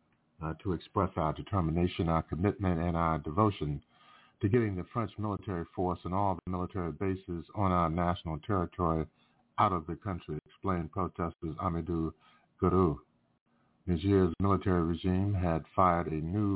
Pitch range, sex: 85-100 Hz, male